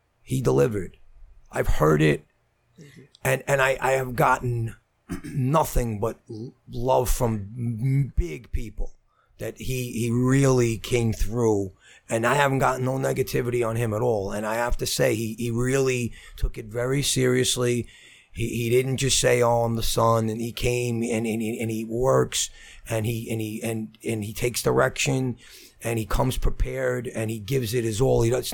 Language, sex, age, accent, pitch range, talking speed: English, male, 30-49, American, 110-125 Hz, 175 wpm